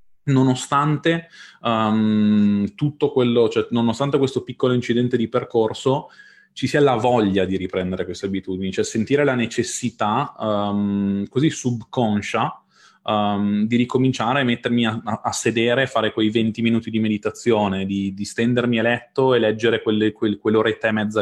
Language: Italian